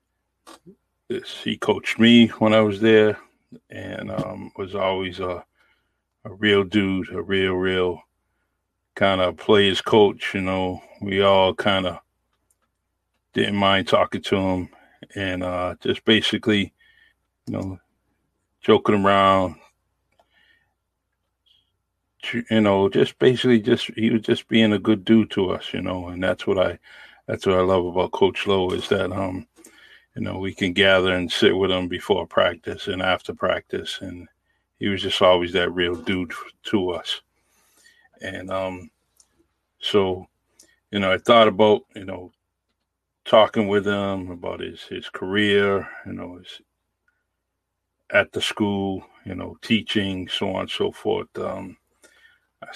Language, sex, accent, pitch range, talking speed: English, male, American, 90-105 Hz, 145 wpm